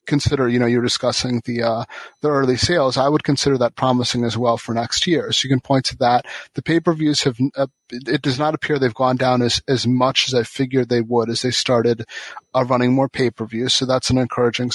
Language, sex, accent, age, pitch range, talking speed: English, male, American, 30-49, 120-130 Hz, 230 wpm